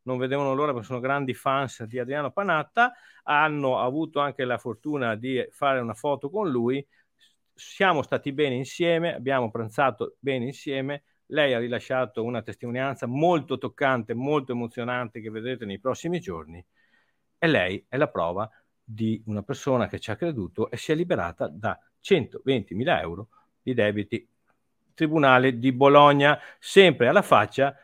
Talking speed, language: 150 wpm, Italian